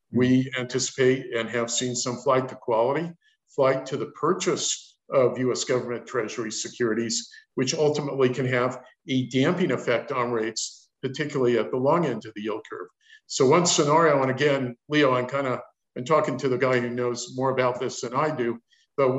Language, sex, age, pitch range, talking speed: English, male, 50-69, 115-140 Hz, 185 wpm